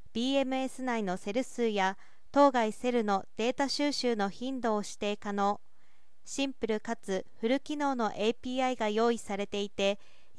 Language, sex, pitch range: Japanese, female, 210-260 Hz